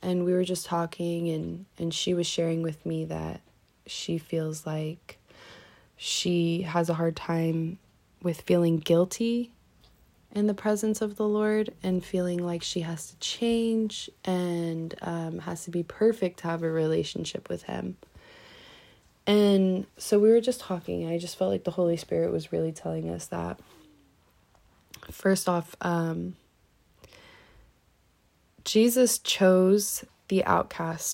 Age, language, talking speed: 20-39, English, 145 wpm